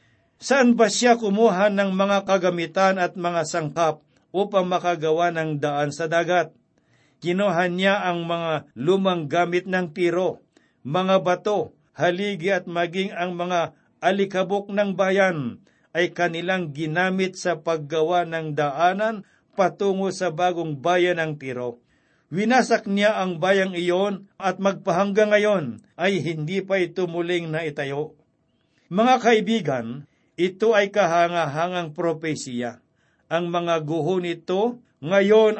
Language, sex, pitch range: Filipino, male, 160-195 Hz